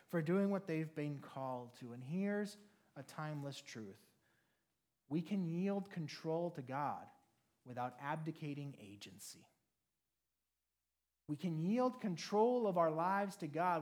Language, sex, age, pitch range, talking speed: English, male, 30-49, 145-210 Hz, 130 wpm